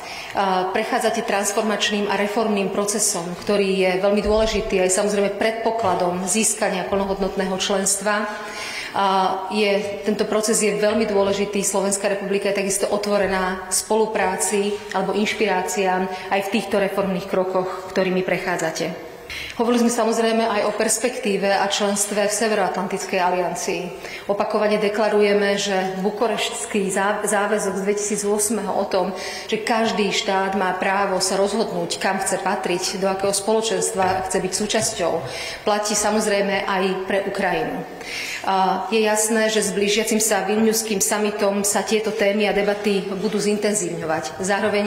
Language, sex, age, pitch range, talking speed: Slovak, female, 30-49, 190-210 Hz, 125 wpm